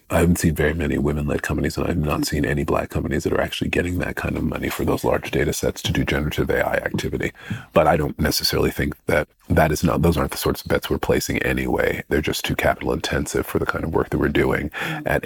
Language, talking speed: English, 250 wpm